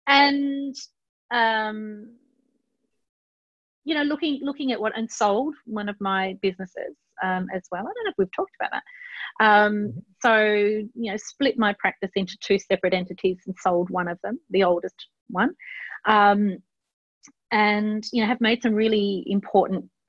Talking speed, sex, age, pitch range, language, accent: 160 wpm, female, 30-49, 180-220 Hz, English, Australian